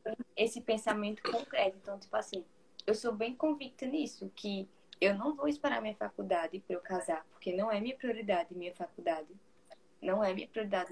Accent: Brazilian